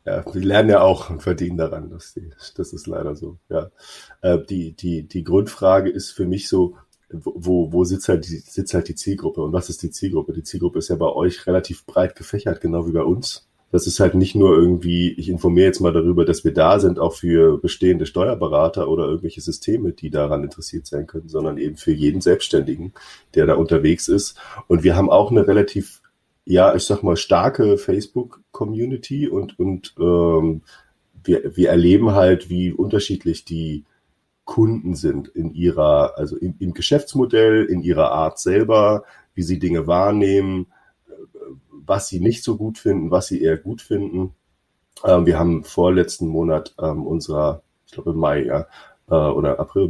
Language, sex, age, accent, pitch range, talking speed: German, male, 30-49, German, 85-105 Hz, 180 wpm